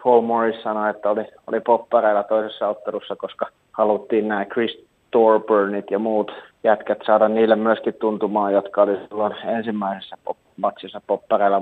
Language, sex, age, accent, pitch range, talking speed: Finnish, male, 30-49, native, 105-115 Hz, 135 wpm